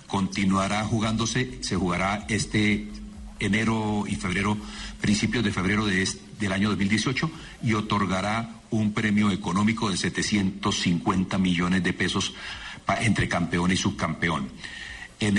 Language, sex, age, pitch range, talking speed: Spanish, male, 50-69, 95-125 Hz, 115 wpm